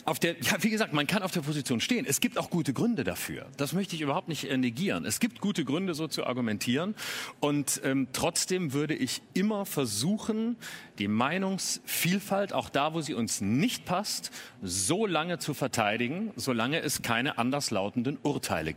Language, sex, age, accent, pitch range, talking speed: German, male, 40-59, German, 125-180 Hz, 175 wpm